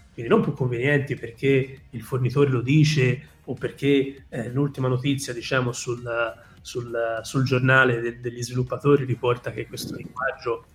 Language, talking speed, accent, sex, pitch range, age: Italian, 145 wpm, native, male, 120-155 Hz, 30-49